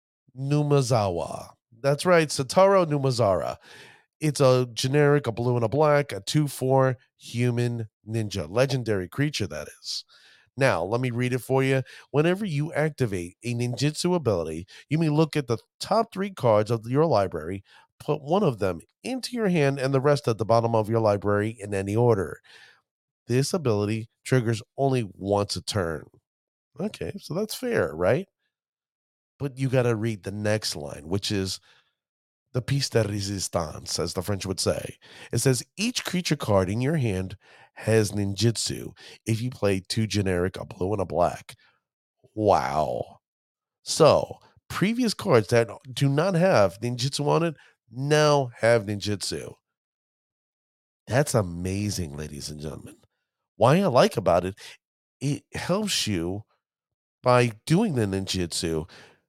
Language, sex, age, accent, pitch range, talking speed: English, male, 30-49, American, 105-145 Hz, 150 wpm